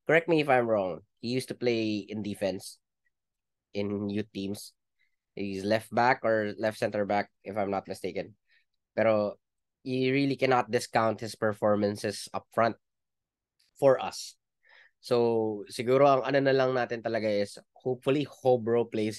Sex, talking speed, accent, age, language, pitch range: male, 145 wpm, native, 20-39, Filipino, 105-130 Hz